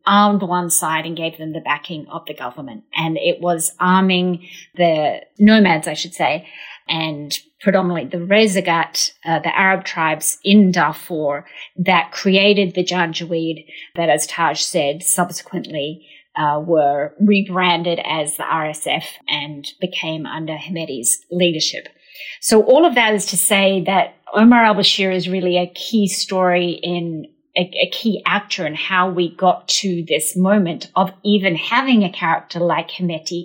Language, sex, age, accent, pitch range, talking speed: English, female, 30-49, Australian, 165-195 Hz, 145 wpm